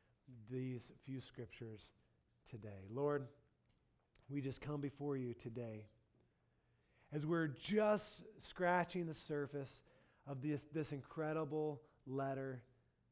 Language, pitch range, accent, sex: English, 120-155 Hz, American, male